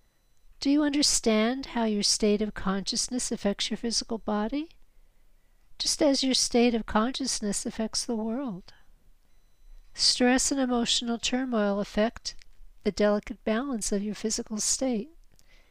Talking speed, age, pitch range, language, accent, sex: 125 wpm, 50-69, 210-250 Hz, English, American, female